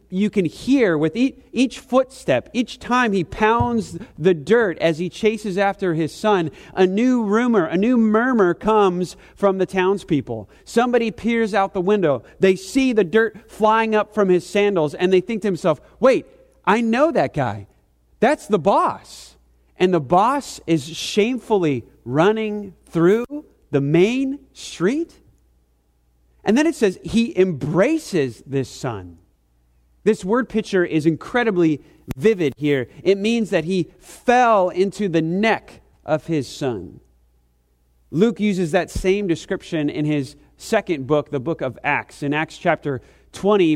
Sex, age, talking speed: male, 40-59, 150 wpm